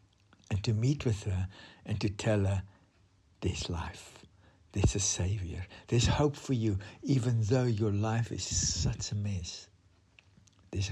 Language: English